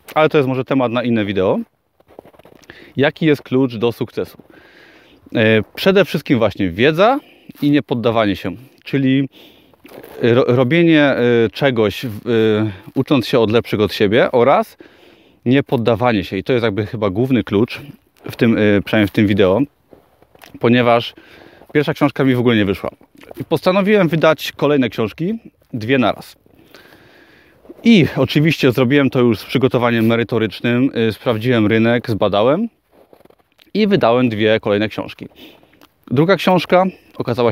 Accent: native